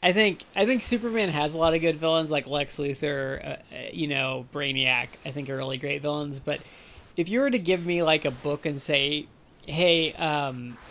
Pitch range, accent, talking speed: 135-170 Hz, American, 210 wpm